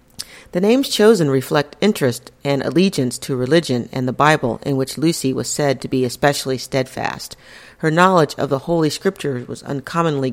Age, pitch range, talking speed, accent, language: 50-69, 130-160 Hz, 170 wpm, American, English